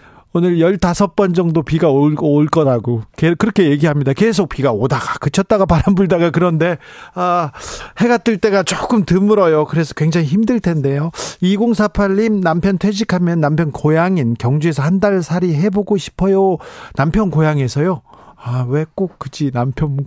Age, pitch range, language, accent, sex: 40-59, 140-185 Hz, Korean, native, male